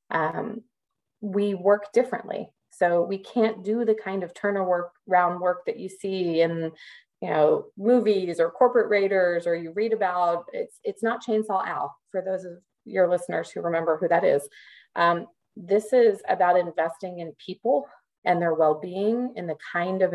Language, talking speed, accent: English, 170 wpm, American